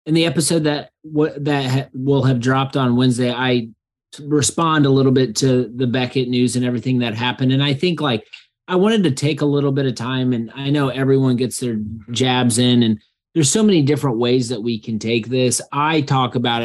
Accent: American